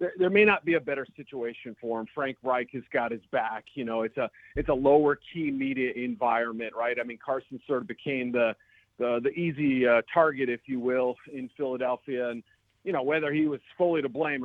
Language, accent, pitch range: English, American, 120-155 Hz